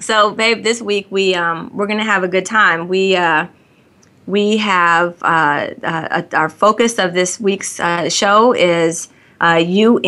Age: 30-49